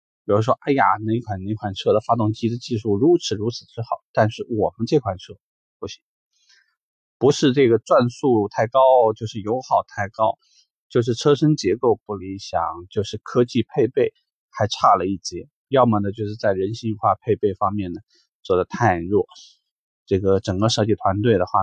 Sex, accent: male, native